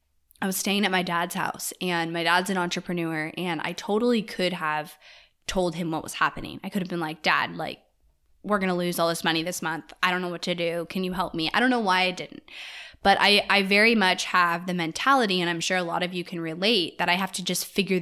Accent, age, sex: American, 10-29, female